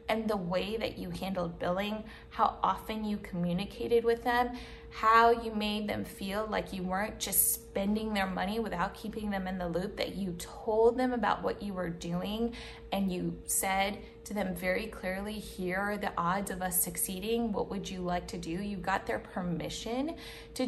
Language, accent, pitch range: English, American, 195-245 Hz